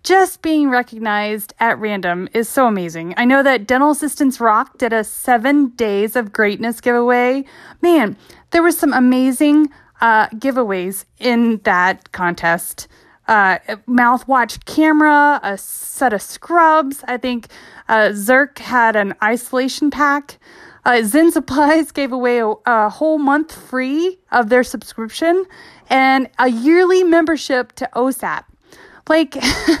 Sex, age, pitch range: female, 30-49, 220-285 Hz